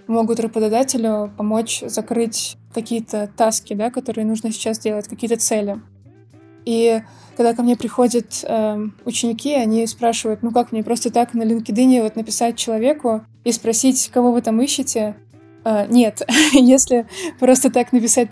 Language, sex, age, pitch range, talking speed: Russian, female, 20-39, 220-240 Hz, 145 wpm